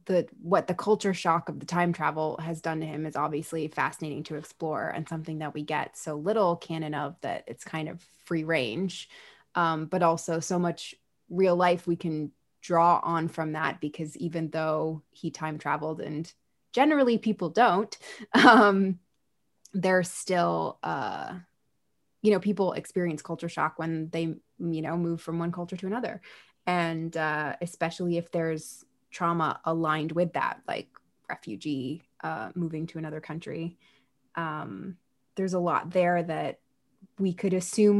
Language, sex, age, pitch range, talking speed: English, female, 20-39, 160-195 Hz, 160 wpm